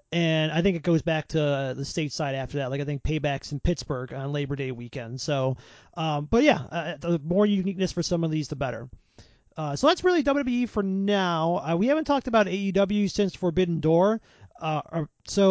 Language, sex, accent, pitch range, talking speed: English, male, American, 150-190 Hz, 210 wpm